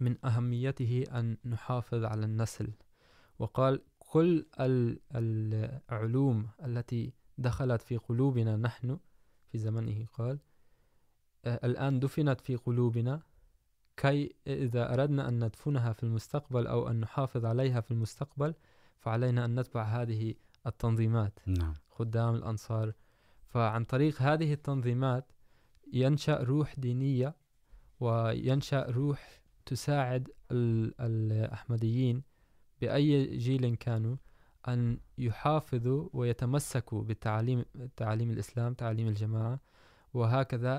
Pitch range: 115-130 Hz